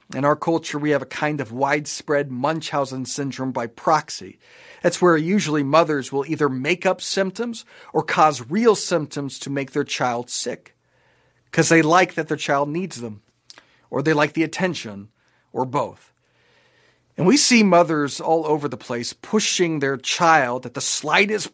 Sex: male